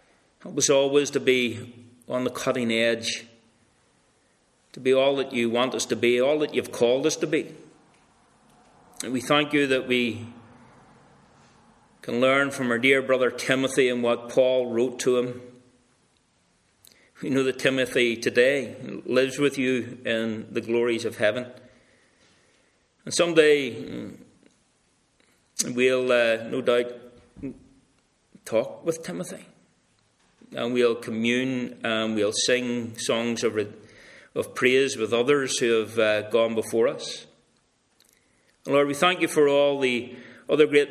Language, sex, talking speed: English, male, 140 wpm